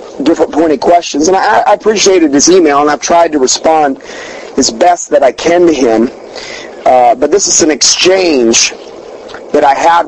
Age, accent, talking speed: 40-59, American, 180 wpm